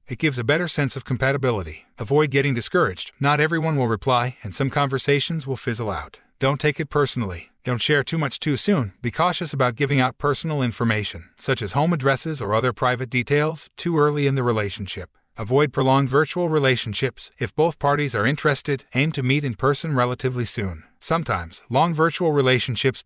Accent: American